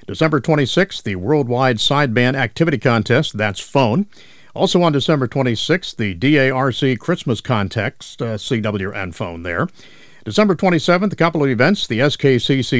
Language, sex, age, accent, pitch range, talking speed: English, male, 50-69, American, 110-150 Hz, 135 wpm